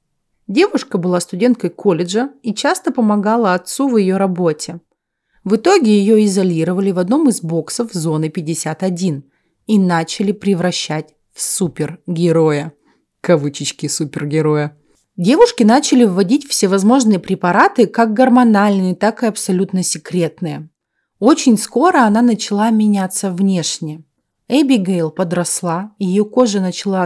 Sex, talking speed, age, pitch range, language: female, 110 wpm, 30-49, 170-220 Hz, Russian